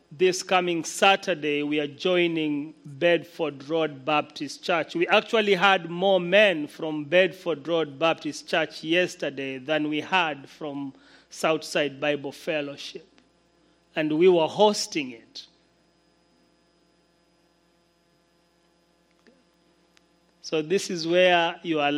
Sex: male